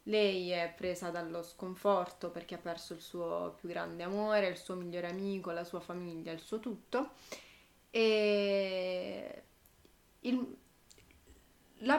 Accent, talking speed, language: native, 130 wpm, Italian